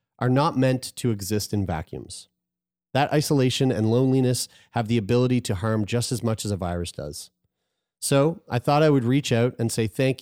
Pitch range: 100-125 Hz